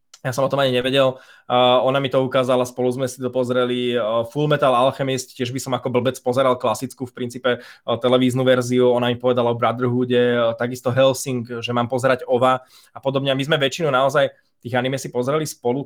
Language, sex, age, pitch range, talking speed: Slovak, male, 20-39, 120-130 Hz, 210 wpm